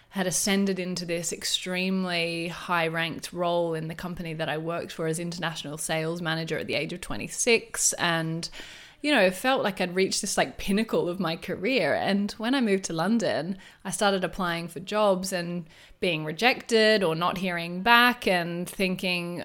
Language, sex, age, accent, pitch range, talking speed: English, female, 20-39, Australian, 165-195 Hz, 175 wpm